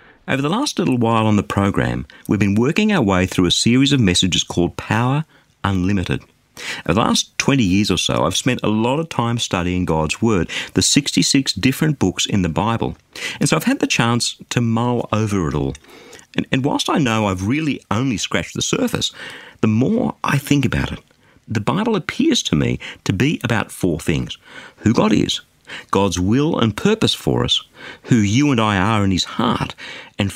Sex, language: male, English